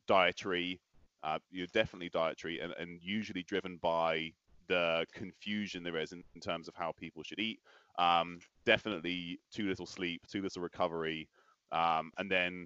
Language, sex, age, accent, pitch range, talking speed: English, male, 20-39, British, 85-110 Hz, 155 wpm